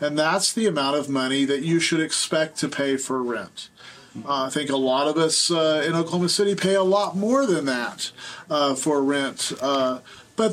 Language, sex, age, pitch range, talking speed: English, male, 40-59, 140-185 Hz, 205 wpm